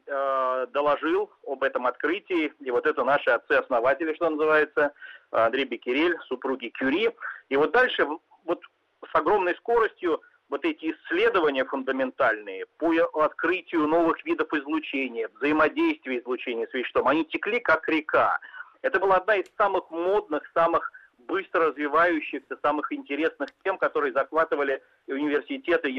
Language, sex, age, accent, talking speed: Russian, male, 40-59, native, 125 wpm